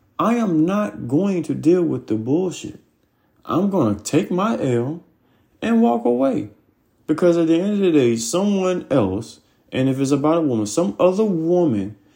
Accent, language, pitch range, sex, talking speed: American, English, 105-145 Hz, male, 180 wpm